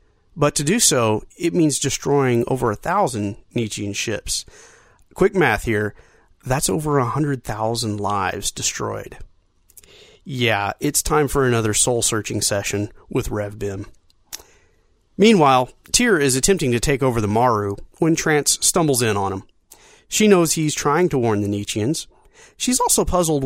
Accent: American